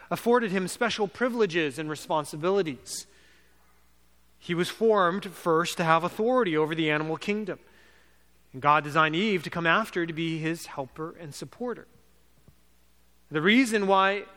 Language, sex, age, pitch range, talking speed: English, male, 30-49, 145-200 Hz, 140 wpm